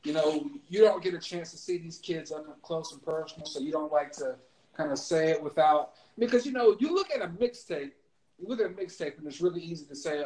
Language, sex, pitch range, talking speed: English, male, 145-170 Hz, 250 wpm